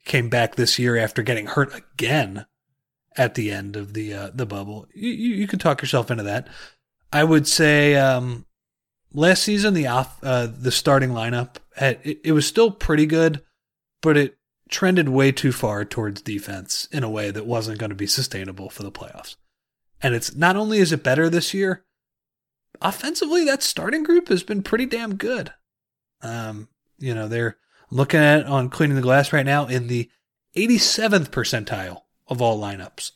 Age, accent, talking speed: 30-49, American, 185 wpm